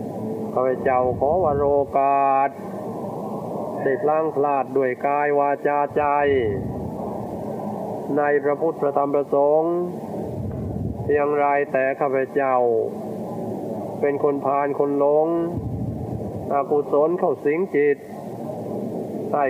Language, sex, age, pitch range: Thai, male, 20-39, 130-145 Hz